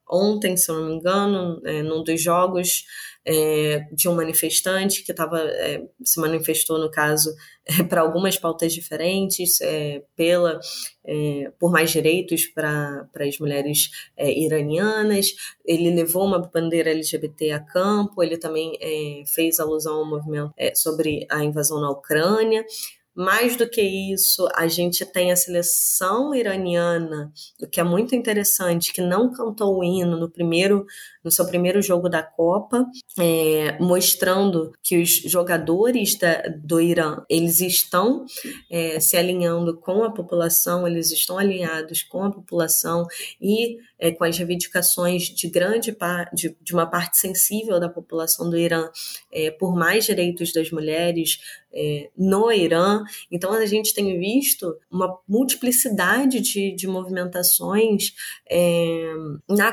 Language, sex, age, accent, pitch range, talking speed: Portuguese, female, 20-39, Brazilian, 160-195 Hz, 130 wpm